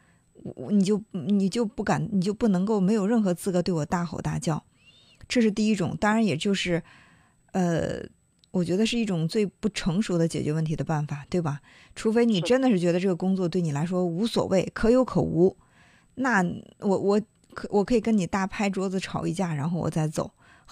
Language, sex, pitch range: Chinese, female, 165-220 Hz